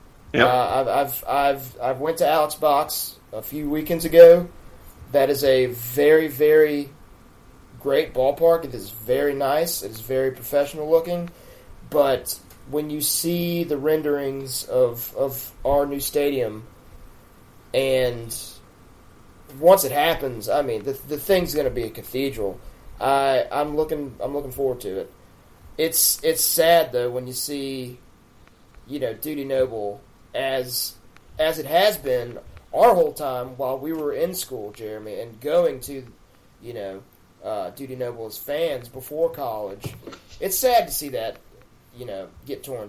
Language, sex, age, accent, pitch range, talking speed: English, male, 30-49, American, 125-155 Hz, 150 wpm